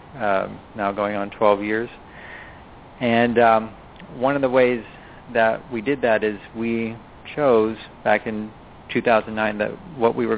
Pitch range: 105-120 Hz